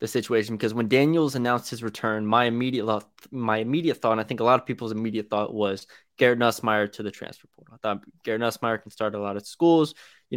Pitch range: 110-125 Hz